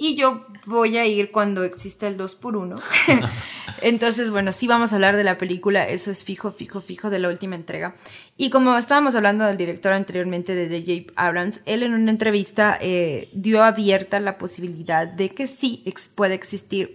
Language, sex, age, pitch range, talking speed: Spanish, female, 20-39, 175-215 Hz, 190 wpm